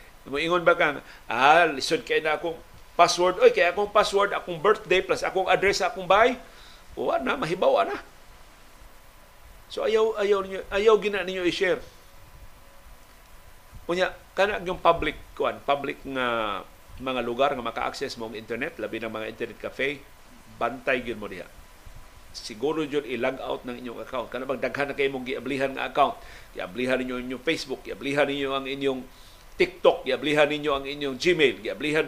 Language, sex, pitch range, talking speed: Filipino, male, 140-190 Hz, 155 wpm